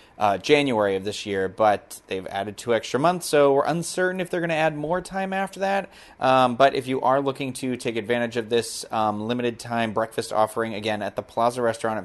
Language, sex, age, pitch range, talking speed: English, male, 30-49, 110-140 Hz, 225 wpm